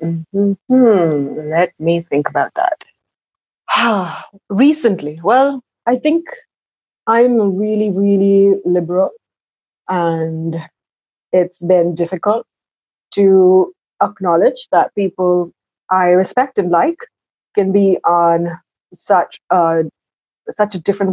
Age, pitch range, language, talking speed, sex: 30-49, 170-215 Hz, English, 100 wpm, female